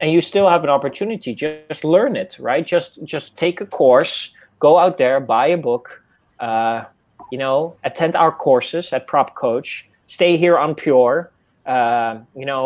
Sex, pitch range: male, 130-165 Hz